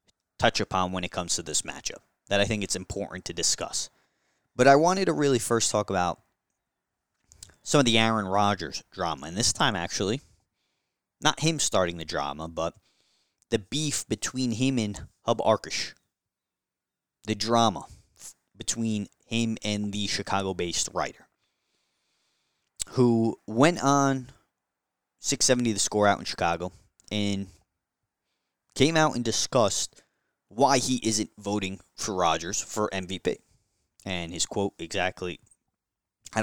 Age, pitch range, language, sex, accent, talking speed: 30-49, 95-120 Hz, English, male, American, 135 wpm